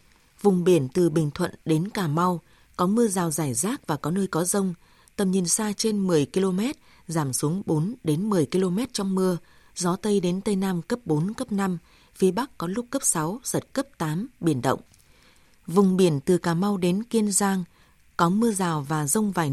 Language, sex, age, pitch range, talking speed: Vietnamese, female, 20-39, 160-205 Hz, 205 wpm